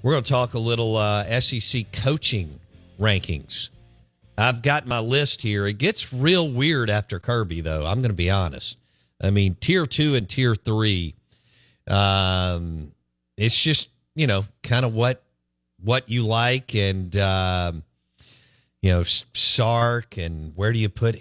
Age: 50-69